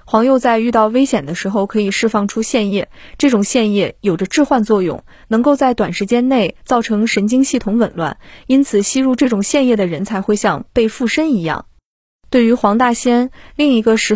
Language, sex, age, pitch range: Chinese, female, 20-39, 205-255 Hz